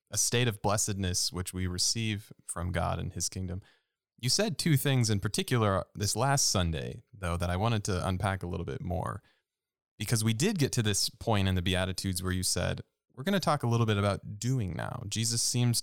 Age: 20-39